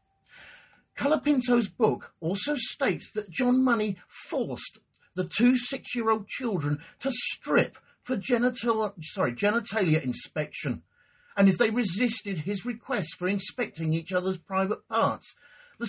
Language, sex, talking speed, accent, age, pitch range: English, male, 120 wpm, British, 50-69, 170-255 Hz